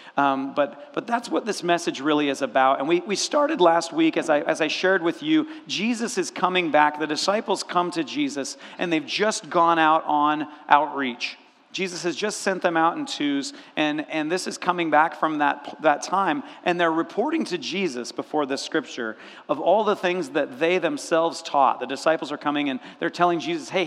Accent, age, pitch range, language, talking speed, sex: American, 40-59, 150-210 Hz, English, 205 wpm, male